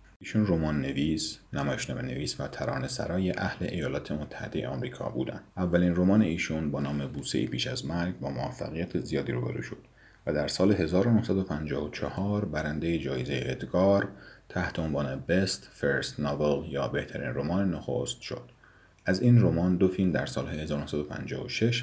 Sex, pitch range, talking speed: male, 75-100 Hz, 140 wpm